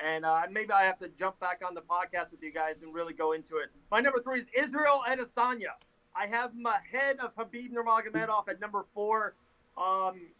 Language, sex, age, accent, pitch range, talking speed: English, male, 30-49, American, 185-235 Hz, 215 wpm